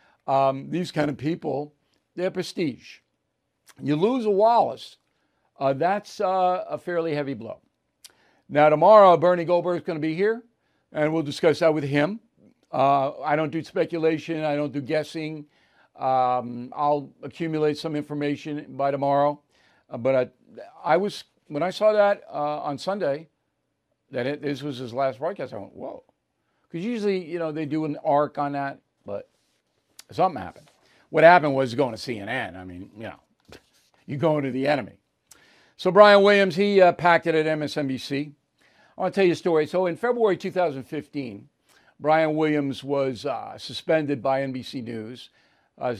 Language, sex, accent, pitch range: English, male, American, 135-170 Hz